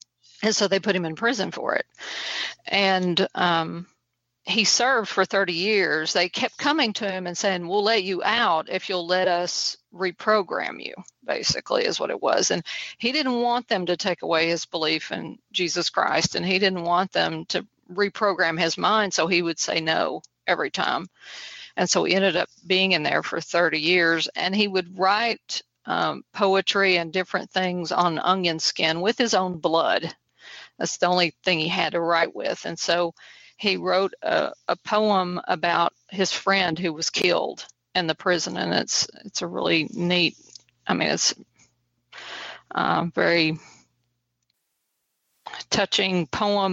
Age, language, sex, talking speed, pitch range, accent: 50-69, English, female, 170 wpm, 170-200 Hz, American